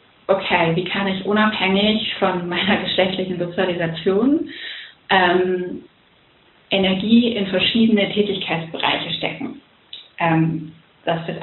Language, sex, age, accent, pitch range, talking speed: German, female, 30-49, German, 175-215 Hz, 95 wpm